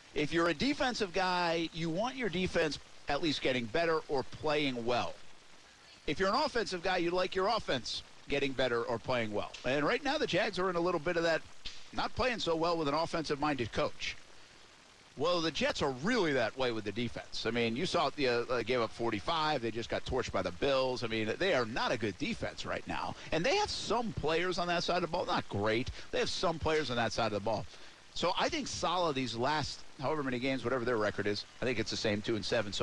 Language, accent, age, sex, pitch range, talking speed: English, American, 50-69, male, 120-170 Hz, 240 wpm